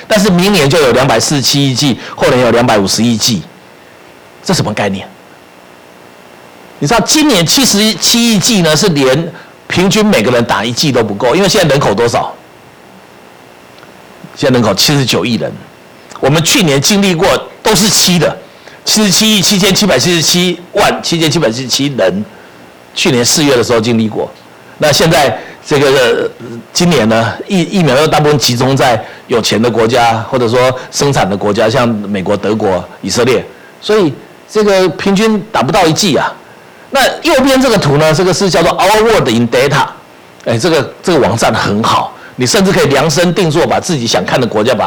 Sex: male